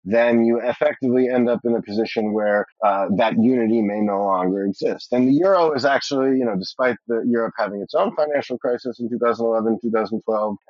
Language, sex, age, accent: English, male, 30-49, American